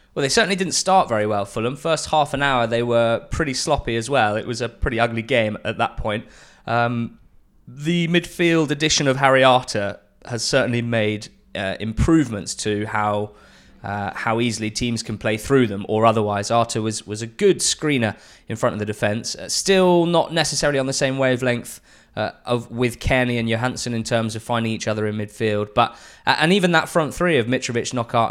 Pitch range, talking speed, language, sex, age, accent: 110-135 Hz, 195 wpm, English, male, 20-39, British